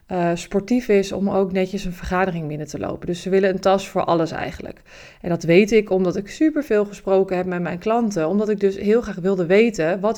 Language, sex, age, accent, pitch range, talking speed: Dutch, female, 20-39, Dutch, 180-200 Hz, 230 wpm